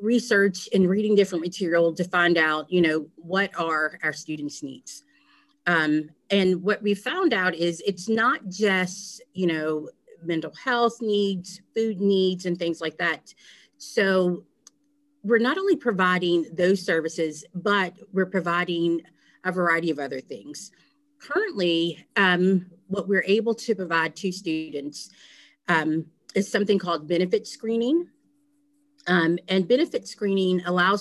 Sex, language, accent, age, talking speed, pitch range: female, English, American, 30-49, 135 wpm, 175-220 Hz